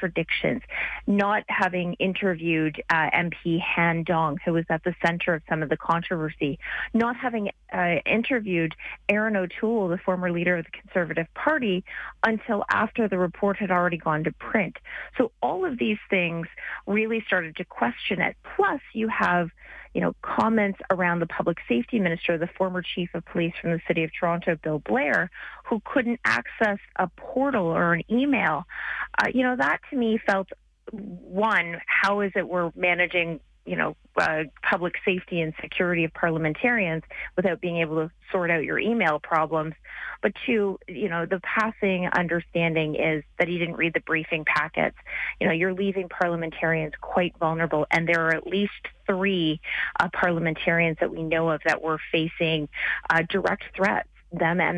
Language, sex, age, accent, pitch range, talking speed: English, female, 30-49, American, 165-200 Hz, 170 wpm